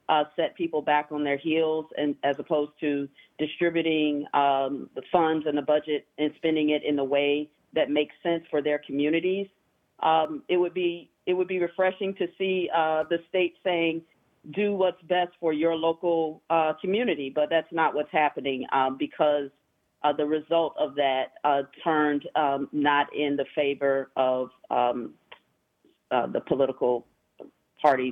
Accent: American